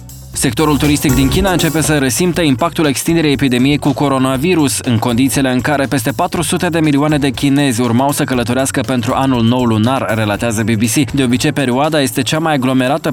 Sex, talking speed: male, 175 wpm